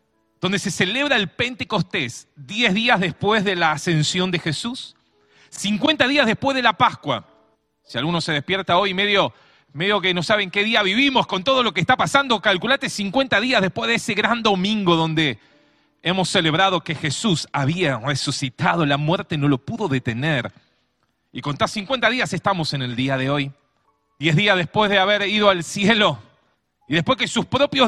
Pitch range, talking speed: 150-225 Hz, 175 wpm